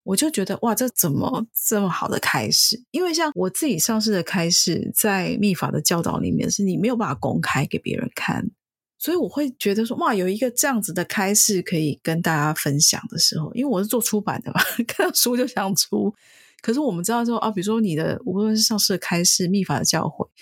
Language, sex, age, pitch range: Chinese, female, 30-49, 175-230 Hz